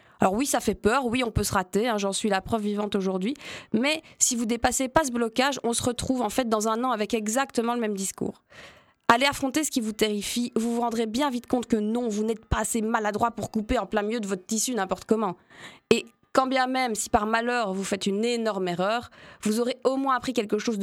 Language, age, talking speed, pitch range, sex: French, 20-39, 250 wpm, 200-245 Hz, female